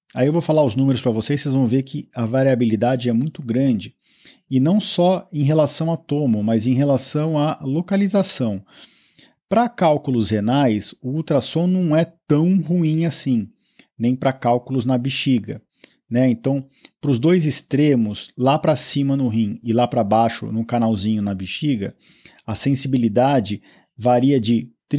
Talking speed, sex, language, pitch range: 165 wpm, male, Portuguese, 120-150 Hz